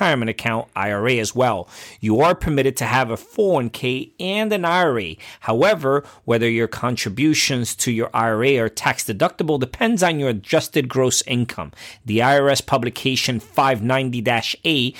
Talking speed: 135 wpm